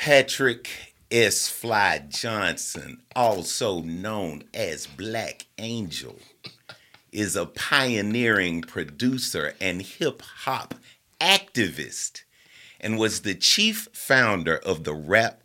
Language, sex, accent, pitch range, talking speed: English, male, American, 90-125 Hz, 95 wpm